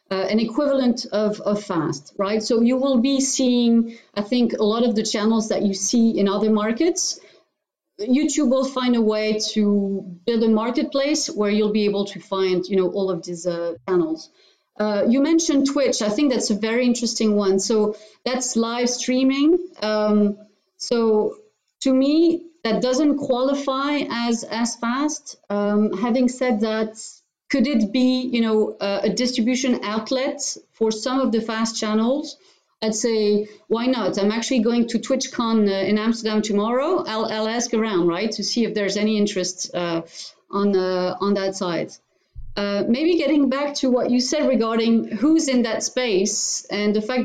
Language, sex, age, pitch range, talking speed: English, female, 40-59, 200-255 Hz, 175 wpm